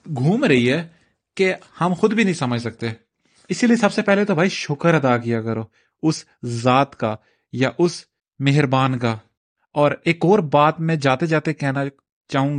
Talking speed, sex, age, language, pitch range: 175 wpm, male, 30-49, Urdu, 120-160 Hz